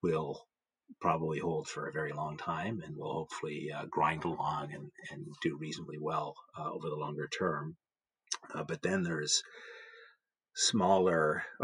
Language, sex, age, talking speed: English, male, 40-59, 150 wpm